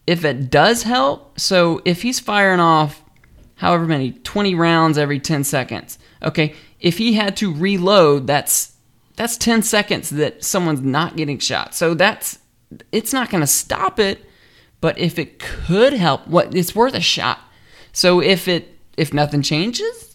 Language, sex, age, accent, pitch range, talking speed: English, male, 20-39, American, 145-210 Hz, 165 wpm